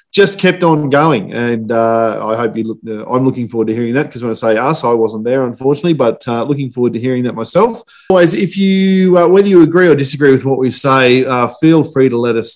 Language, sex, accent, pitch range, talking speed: English, male, Australian, 115-150 Hz, 255 wpm